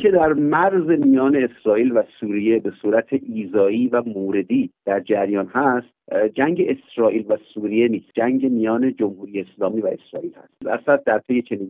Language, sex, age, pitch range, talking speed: Persian, male, 50-69, 115-190 Hz, 160 wpm